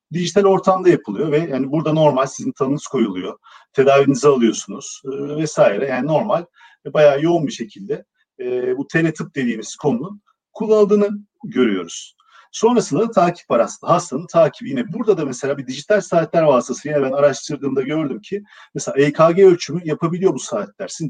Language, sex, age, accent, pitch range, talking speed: Turkish, male, 50-69, native, 140-195 Hz, 155 wpm